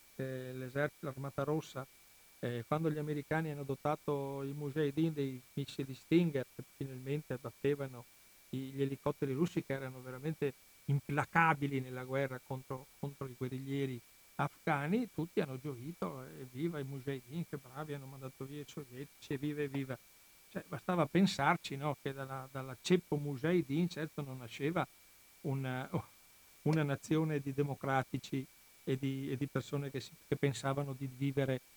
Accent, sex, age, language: native, male, 60-79, Italian